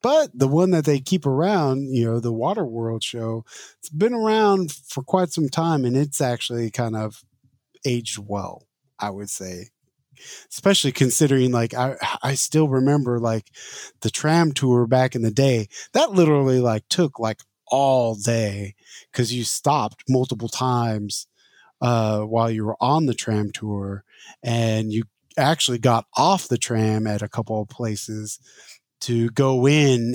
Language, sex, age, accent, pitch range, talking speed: English, male, 30-49, American, 110-135 Hz, 155 wpm